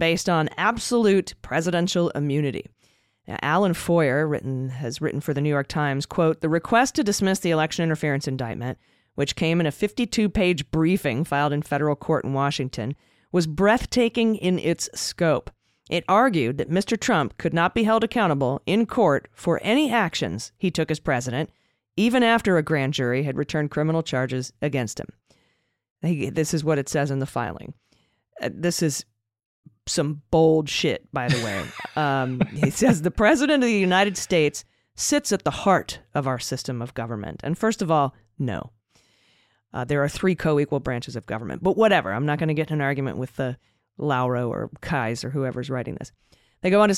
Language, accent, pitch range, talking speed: English, American, 130-180 Hz, 180 wpm